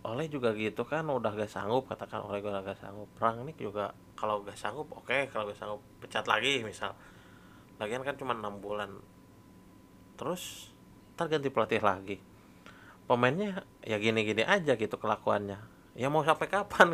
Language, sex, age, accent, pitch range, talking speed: Indonesian, male, 30-49, native, 105-160 Hz, 160 wpm